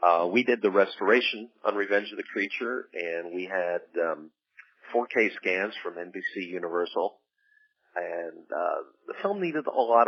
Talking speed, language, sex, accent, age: 155 wpm, English, male, American, 40-59